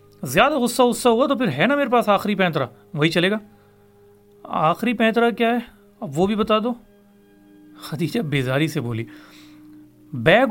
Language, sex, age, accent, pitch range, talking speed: English, male, 30-49, Indian, 135-210 Hz, 150 wpm